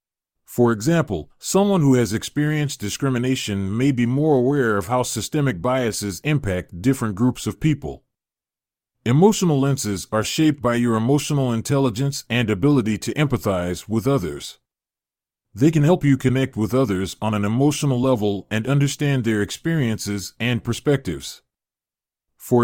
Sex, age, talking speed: male, 40-59, 140 wpm